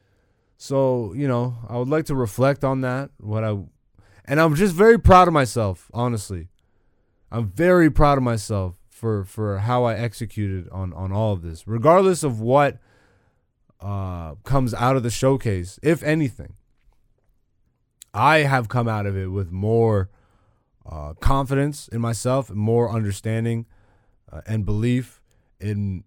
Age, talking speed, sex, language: 20-39, 150 wpm, male, English